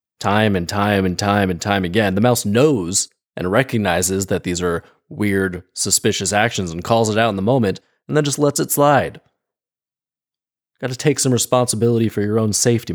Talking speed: 185 wpm